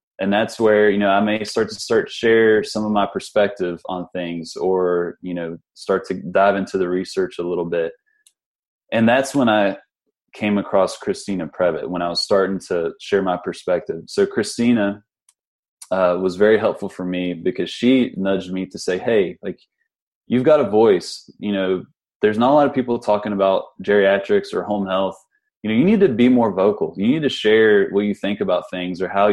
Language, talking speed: English, 205 wpm